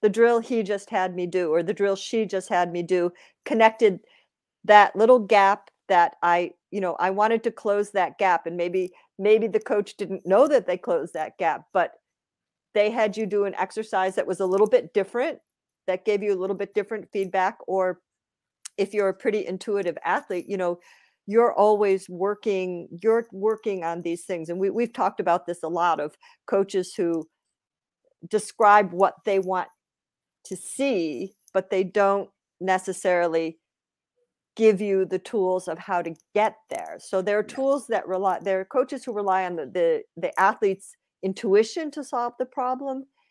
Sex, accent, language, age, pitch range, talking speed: female, American, English, 50-69, 180-215 Hz, 180 wpm